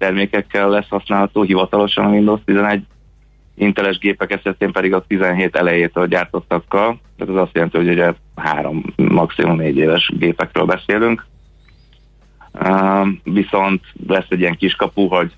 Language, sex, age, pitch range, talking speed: Hungarian, male, 30-49, 85-100 Hz, 135 wpm